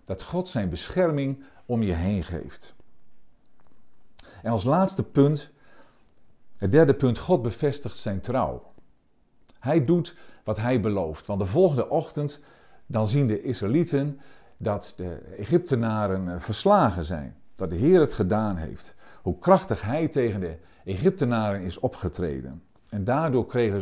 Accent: Dutch